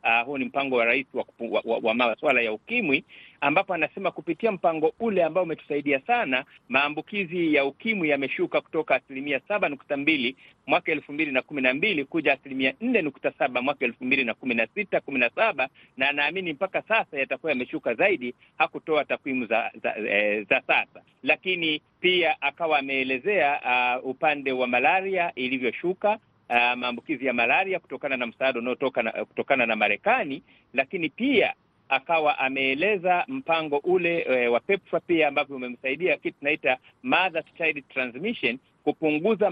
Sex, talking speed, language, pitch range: male, 145 wpm, Swahili, 130-175 Hz